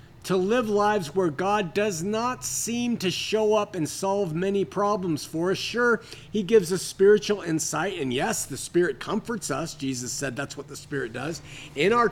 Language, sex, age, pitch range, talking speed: English, male, 50-69, 145-200 Hz, 190 wpm